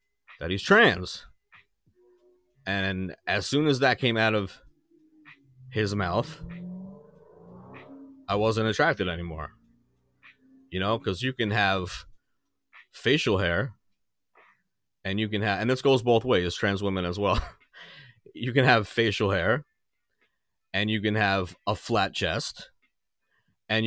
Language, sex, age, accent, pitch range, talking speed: English, male, 30-49, American, 90-125 Hz, 130 wpm